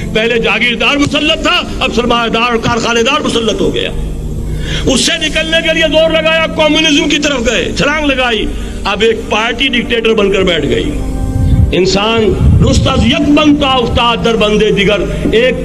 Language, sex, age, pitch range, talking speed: Urdu, male, 60-79, 205-285 Hz, 85 wpm